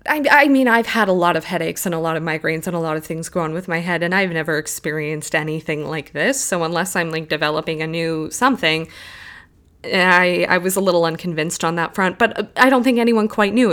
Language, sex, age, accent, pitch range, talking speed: English, female, 20-39, American, 160-205 Hz, 240 wpm